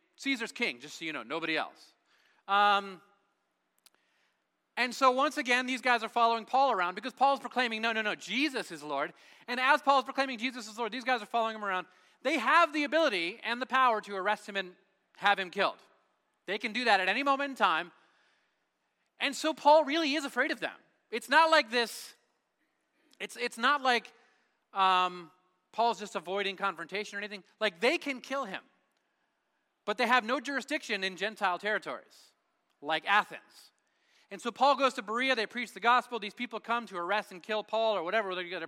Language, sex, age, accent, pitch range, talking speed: English, male, 30-49, American, 195-260 Hz, 190 wpm